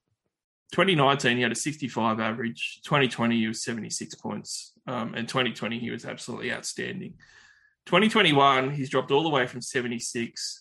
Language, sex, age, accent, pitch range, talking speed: English, male, 20-39, Australian, 115-130 Hz, 145 wpm